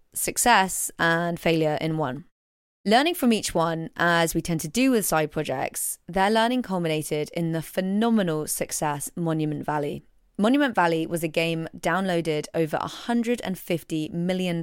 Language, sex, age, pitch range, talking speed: English, female, 20-39, 160-200 Hz, 145 wpm